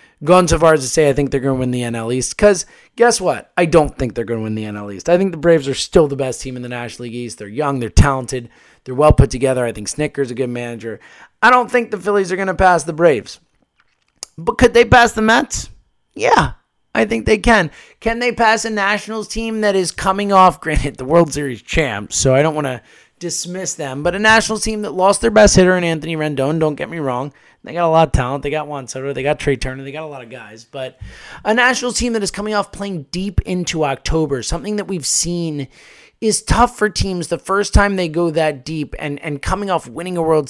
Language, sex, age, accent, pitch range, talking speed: English, male, 20-39, American, 140-200 Hz, 250 wpm